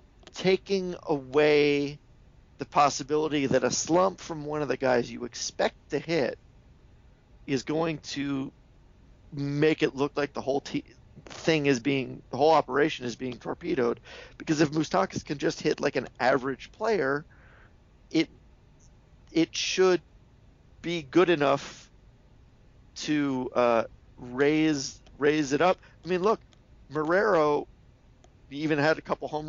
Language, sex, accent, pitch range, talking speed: English, male, American, 125-160 Hz, 135 wpm